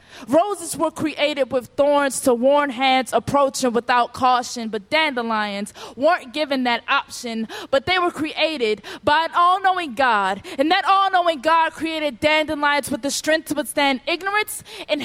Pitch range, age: 250-320 Hz, 20-39